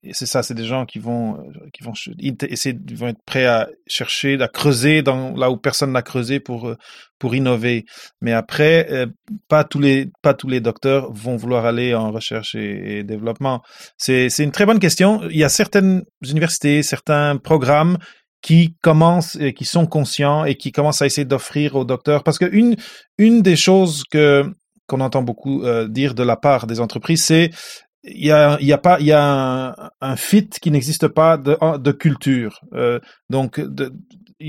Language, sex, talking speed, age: French, male, 195 wpm, 30-49